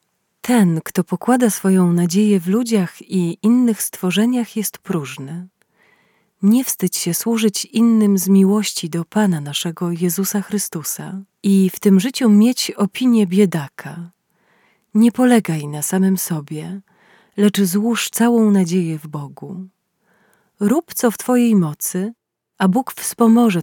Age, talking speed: 30-49, 125 wpm